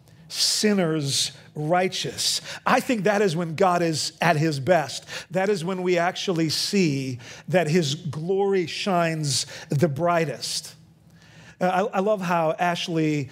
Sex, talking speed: male, 125 wpm